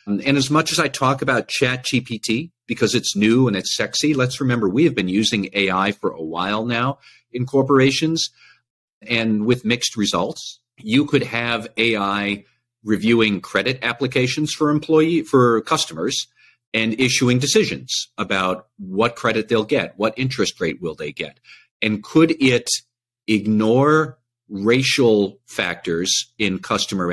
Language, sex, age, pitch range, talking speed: English, male, 50-69, 100-130 Hz, 140 wpm